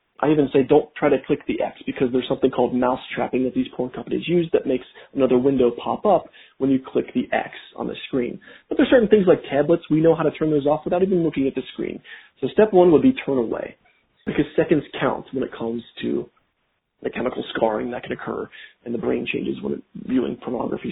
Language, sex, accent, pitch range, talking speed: English, male, American, 130-170 Hz, 230 wpm